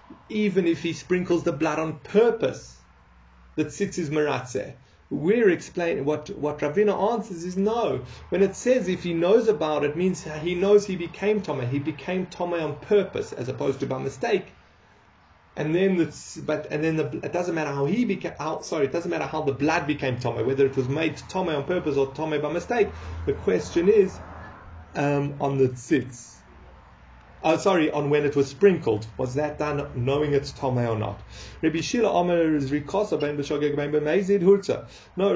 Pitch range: 140-180 Hz